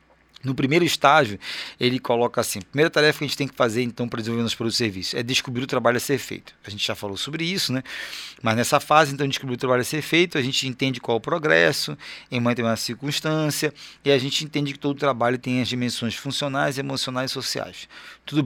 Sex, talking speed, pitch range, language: male, 235 wpm, 120-150 Hz, Portuguese